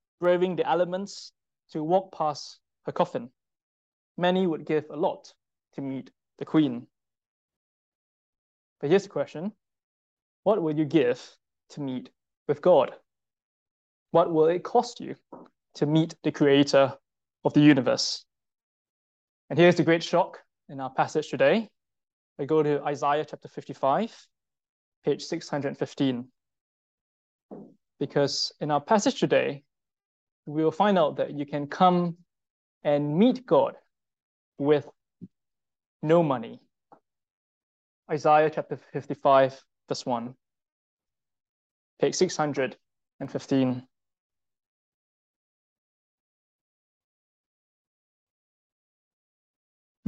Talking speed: 100 wpm